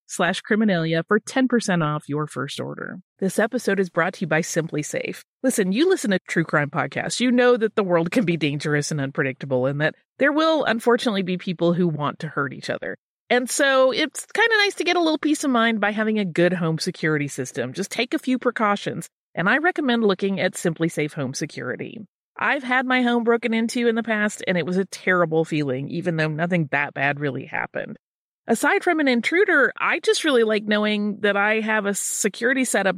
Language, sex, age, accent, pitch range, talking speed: English, female, 30-49, American, 160-240 Hz, 215 wpm